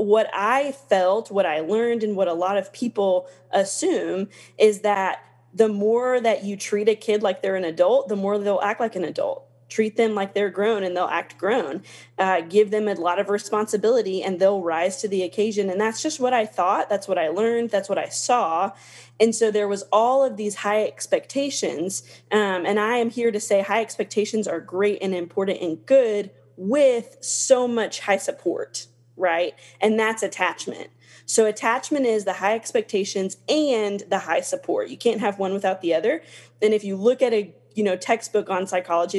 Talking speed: 200 wpm